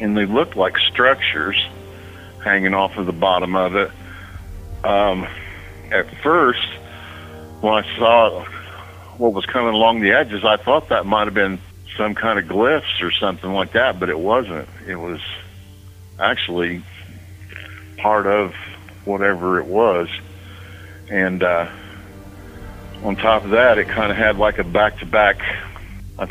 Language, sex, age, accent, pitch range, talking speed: English, male, 60-79, American, 95-110 Hz, 145 wpm